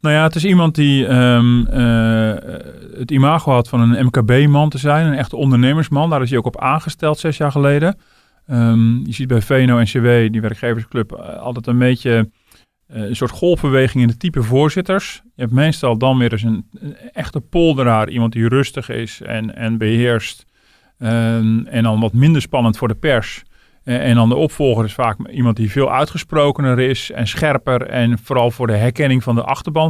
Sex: male